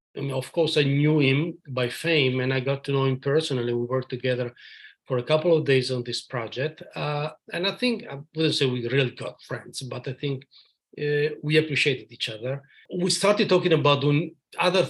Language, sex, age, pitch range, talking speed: English, male, 40-59, 130-160 Hz, 200 wpm